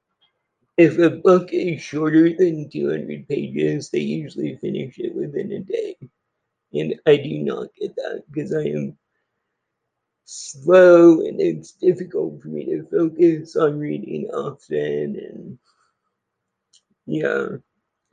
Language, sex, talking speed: English, male, 125 wpm